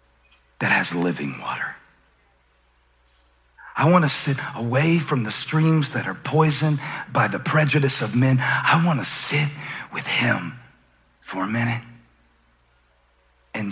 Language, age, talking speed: English, 50-69, 130 wpm